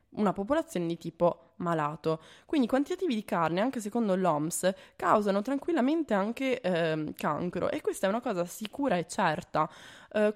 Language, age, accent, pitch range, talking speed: Italian, 20-39, native, 165-230 Hz, 155 wpm